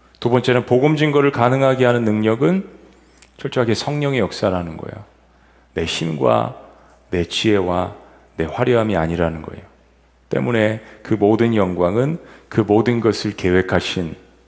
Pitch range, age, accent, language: 85-115 Hz, 40-59, native, Korean